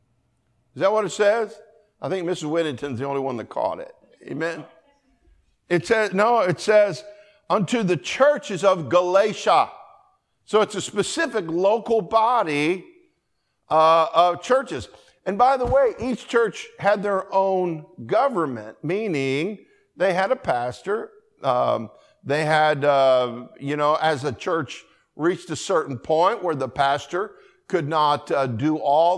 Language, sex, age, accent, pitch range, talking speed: English, male, 50-69, American, 140-200 Hz, 145 wpm